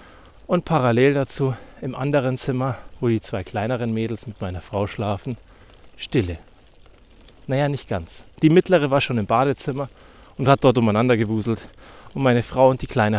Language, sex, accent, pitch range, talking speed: German, male, German, 105-140 Hz, 165 wpm